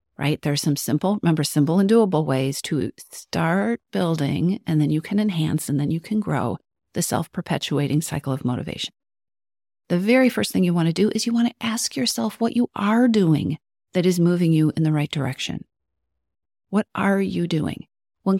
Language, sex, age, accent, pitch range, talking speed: English, female, 40-59, American, 155-205 Hz, 190 wpm